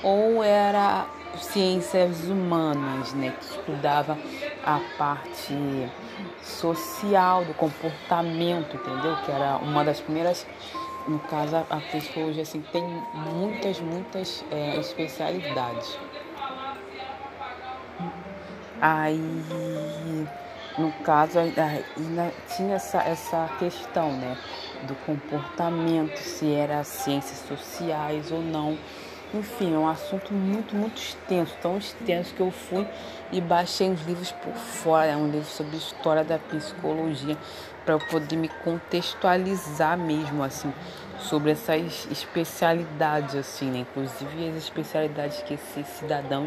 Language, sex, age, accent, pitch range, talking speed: Portuguese, female, 20-39, Brazilian, 150-180 Hz, 110 wpm